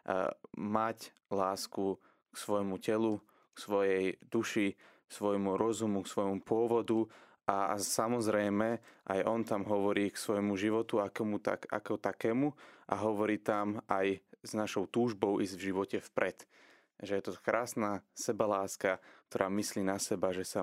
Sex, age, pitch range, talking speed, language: male, 20-39, 95-110 Hz, 145 wpm, Slovak